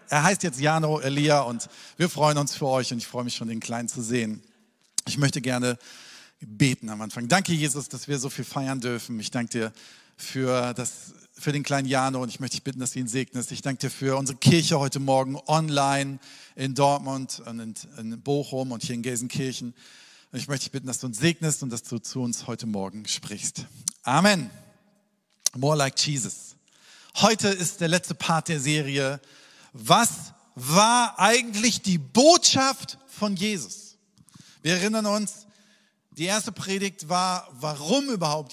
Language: German